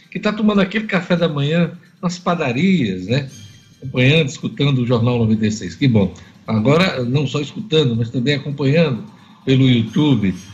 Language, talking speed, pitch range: Portuguese, 150 wpm, 125-180 Hz